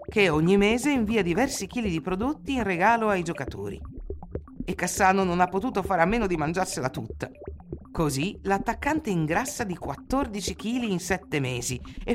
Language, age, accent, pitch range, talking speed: Italian, 50-69, native, 150-215 Hz, 165 wpm